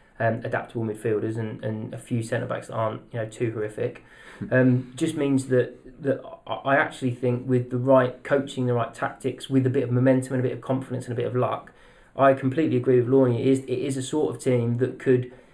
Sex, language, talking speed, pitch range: male, English, 230 wpm, 120-135 Hz